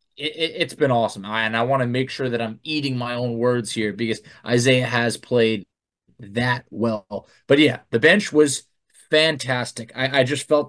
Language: English